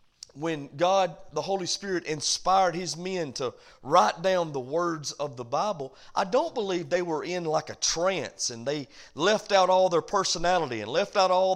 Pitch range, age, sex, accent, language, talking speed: 180-280 Hz, 40-59, male, American, English, 185 wpm